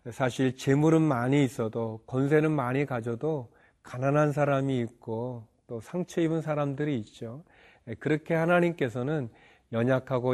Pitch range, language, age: 115-140 Hz, Korean, 40-59